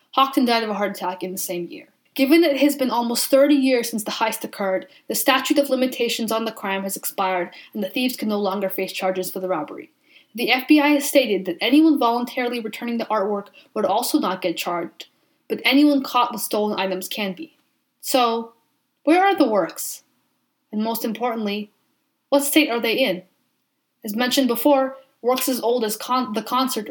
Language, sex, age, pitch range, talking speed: English, female, 20-39, 205-265 Hz, 195 wpm